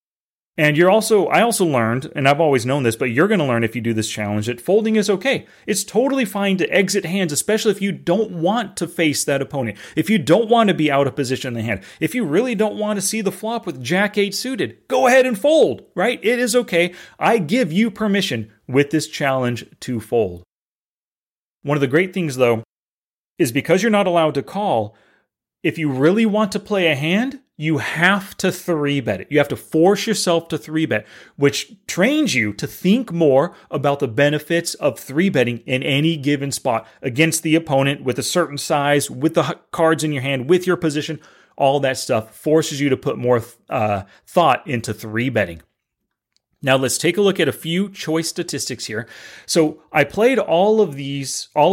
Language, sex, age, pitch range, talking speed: English, male, 30-49, 125-185 Hz, 205 wpm